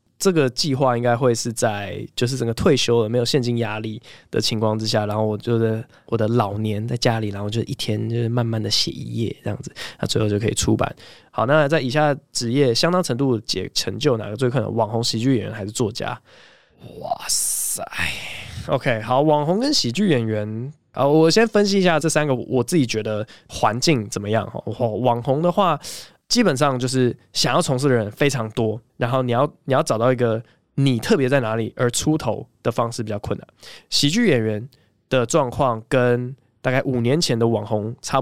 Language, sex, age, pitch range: Chinese, male, 20-39, 115-145 Hz